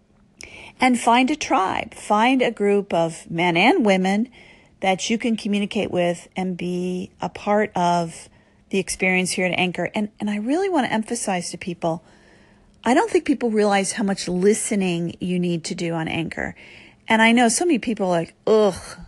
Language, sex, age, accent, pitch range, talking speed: English, female, 40-59, American, 185-245 Hz, 180 wpm